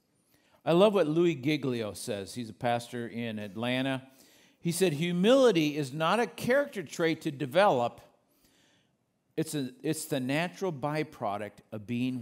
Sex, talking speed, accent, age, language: male, 135 wpm, American, 50-69, English